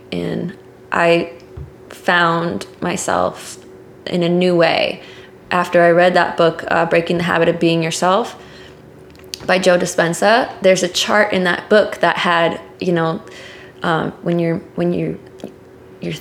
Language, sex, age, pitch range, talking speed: English, female, 20-39, 165-185 Hz, 145 wpm